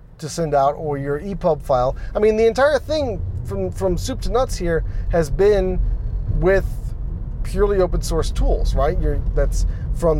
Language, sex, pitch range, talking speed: English, male, 130-195 Hz, 170 wpm